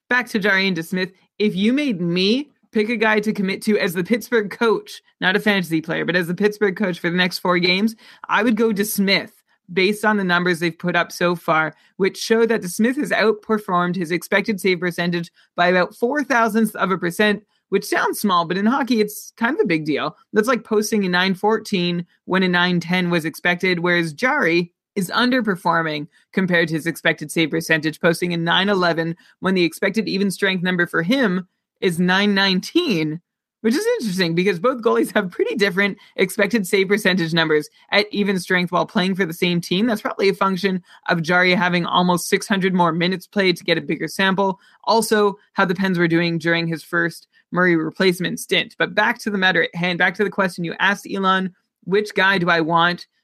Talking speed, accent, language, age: 205 wpm, American, English, 30-49